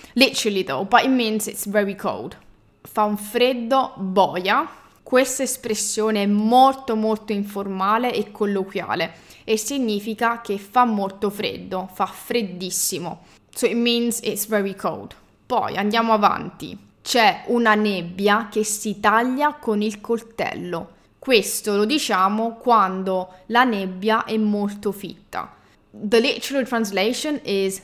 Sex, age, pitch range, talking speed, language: female, 10-29, 200-240 Hz, 125 wpm, English